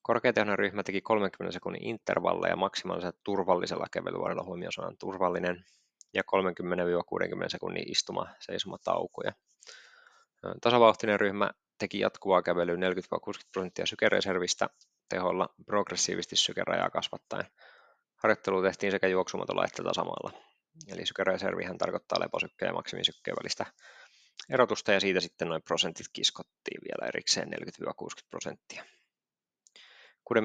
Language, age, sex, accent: Finnish, 20-39, male, native